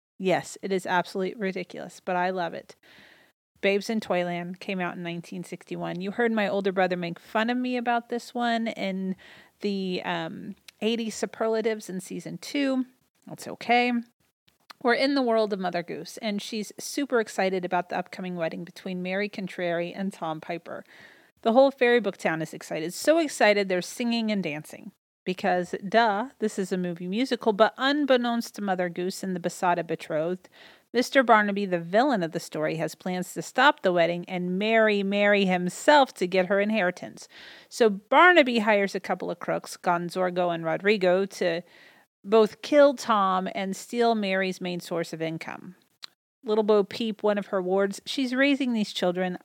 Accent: American